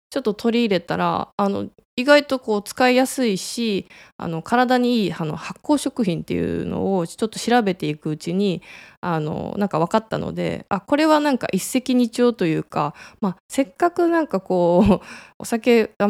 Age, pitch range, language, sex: 20-39, 180-245 Hz, Japanese, female